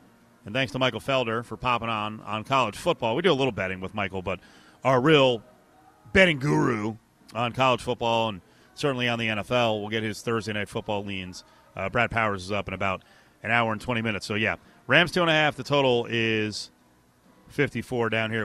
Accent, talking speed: American, 205 wpm